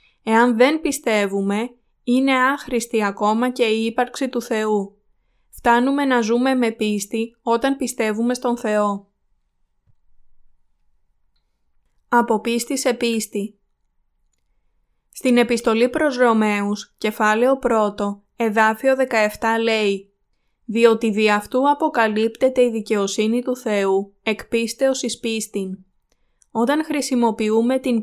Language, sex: Greek, female